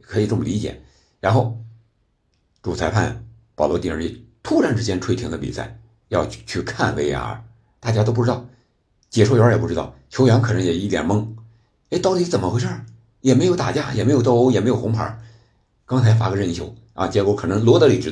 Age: 60-79